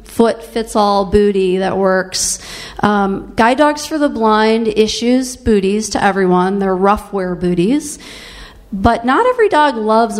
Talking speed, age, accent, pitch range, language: 145 wpm, 40-59, American, 195-250 Hz, English